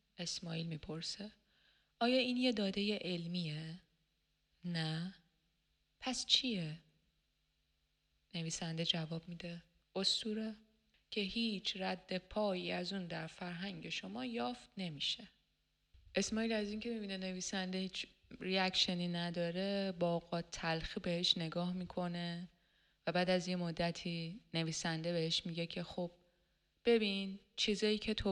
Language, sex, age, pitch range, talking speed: Persian, female, 20-39, 165-200 Hz, 110 wpm